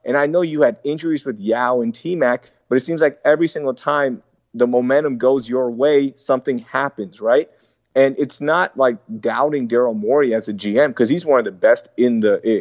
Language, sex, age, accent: English, male, 30-49, American